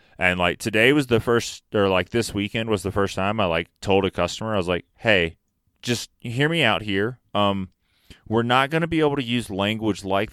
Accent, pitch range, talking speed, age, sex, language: American, 90-115 Hz, 225 wpm, 30-49, male, English